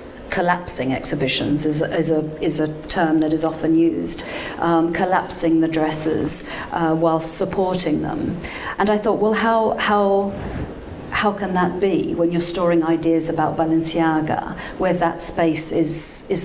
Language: English